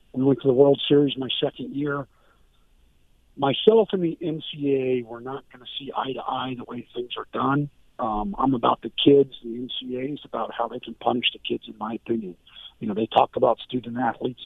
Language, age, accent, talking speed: English, 50-69, American, 195 wpm